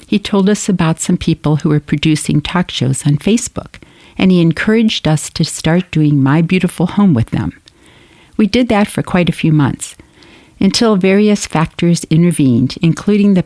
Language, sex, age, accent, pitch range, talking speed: English, female, 60-79, American, 140-185 Hz, 175 wpm